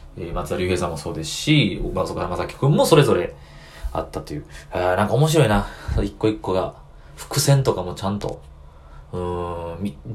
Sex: male